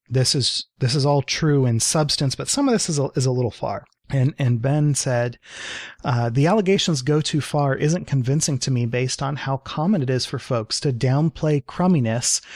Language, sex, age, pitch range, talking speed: English, male, 30-49, 130-155 Hz, 210 wpm